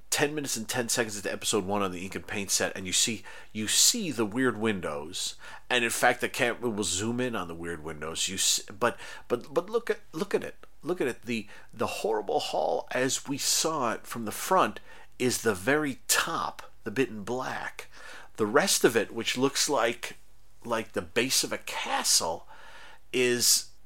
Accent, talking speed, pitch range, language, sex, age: American, 200 wpm, 105-125 Hz, English, male, 40-59